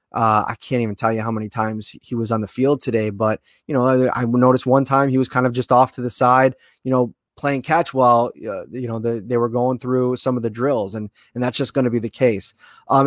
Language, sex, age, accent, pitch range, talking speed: English, male, 20-39, American, 125-155 Hz, 260 wpm